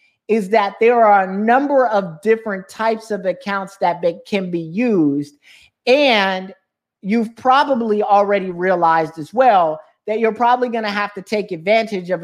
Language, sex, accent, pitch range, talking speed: English, male, American, 170-220 Hz, 155 wpm